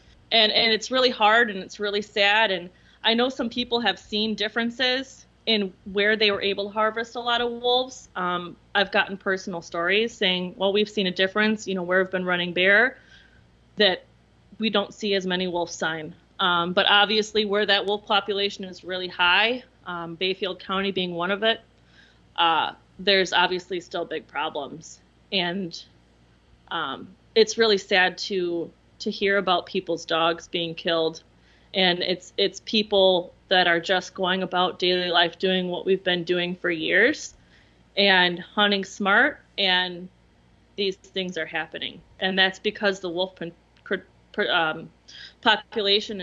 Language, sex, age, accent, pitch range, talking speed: English, female, 30-49, American, 180-210 Hz, 160 wpm